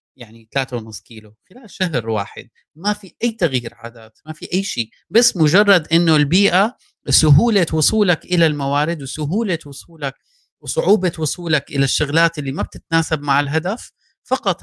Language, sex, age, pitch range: Arabic, male, 30-49, 130-180 Hz